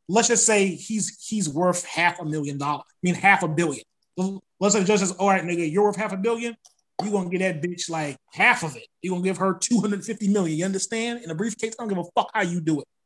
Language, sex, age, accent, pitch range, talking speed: English, male, 20-39, American, 170-220 Hz, 270 wpm